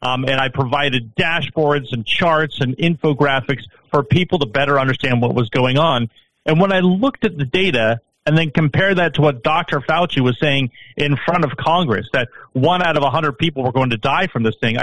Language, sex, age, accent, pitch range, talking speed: English, male, 40-59, American, 130-165 Hz, 210 wpm